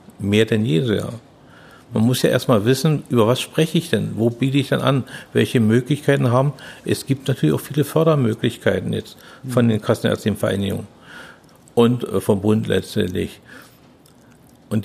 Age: 50-69